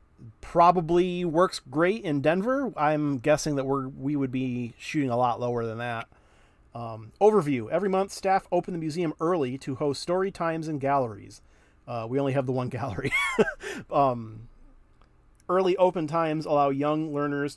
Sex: male